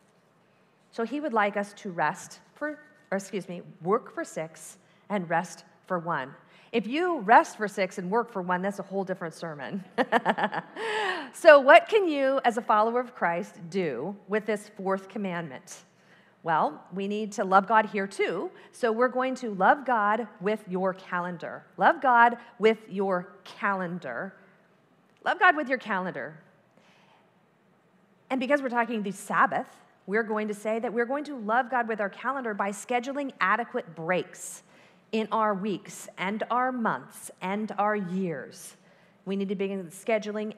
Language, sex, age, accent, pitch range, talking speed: English, female, 40-59, American, 185-235 Hz, 165 wpm